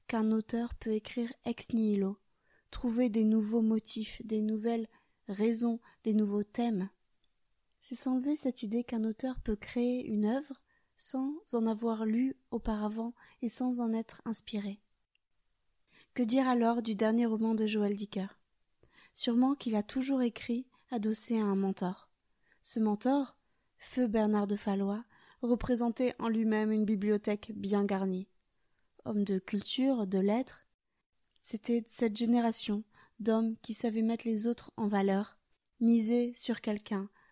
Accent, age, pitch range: French, 20-39, 210-240 Hz